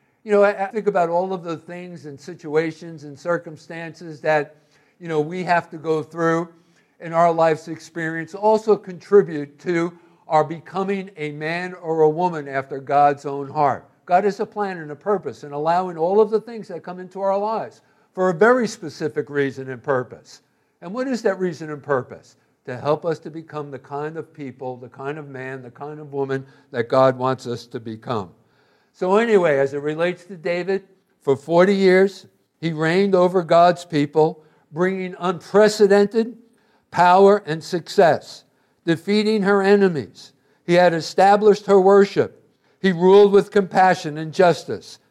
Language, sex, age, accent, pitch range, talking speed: English, male, 60-79, American, 145-185 Hz, 170 wpm